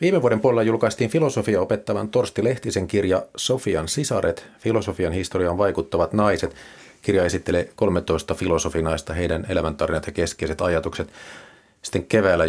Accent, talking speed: native, 125 wpm